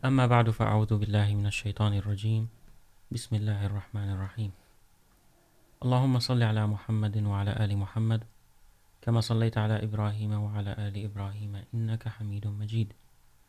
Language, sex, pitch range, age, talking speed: Urdu, male, 105-120 Hz, 30-49, 125 wpm